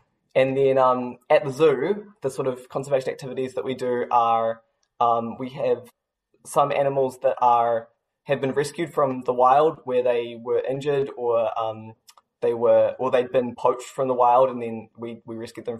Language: English